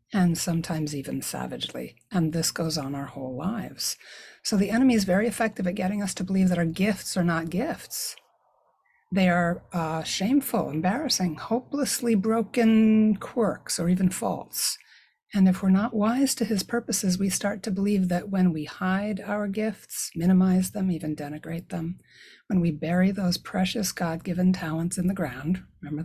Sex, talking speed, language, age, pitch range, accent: female, 170 wpm, English, 60-79, 170-215 Hz, American